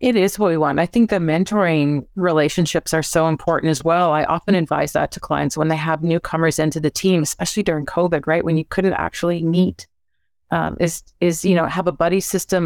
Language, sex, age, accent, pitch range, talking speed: English, female, 30-49, American, 150-185 Hz, 220 wpm